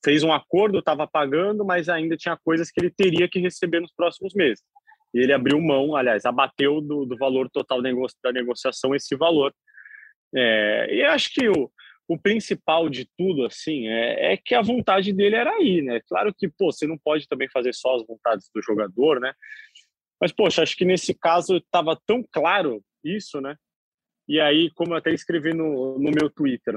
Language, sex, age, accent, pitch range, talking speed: Portuguese, male, 20-39, Brazilian, 130-190 Hz, 190 wpm